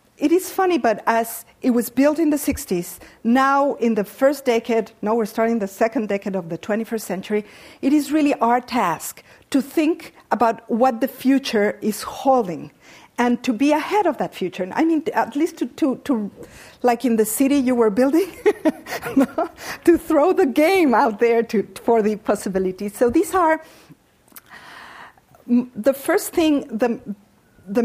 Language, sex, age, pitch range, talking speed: English, female, 50-69, 215-275 Hz, 170 wpm